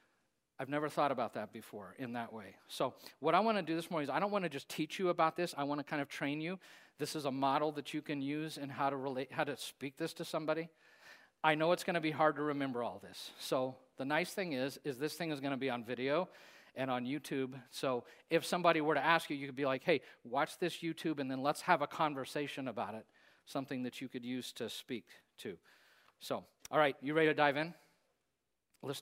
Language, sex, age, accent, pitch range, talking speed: English, male, 50-69, American, 135-160 Hz, 250 wpm